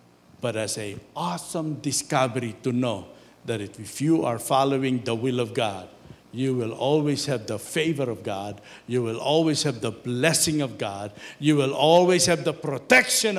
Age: 60-79